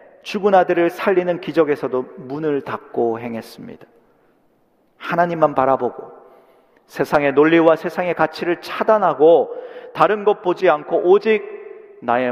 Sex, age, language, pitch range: male, 40-59, Korean, 140-210 Hz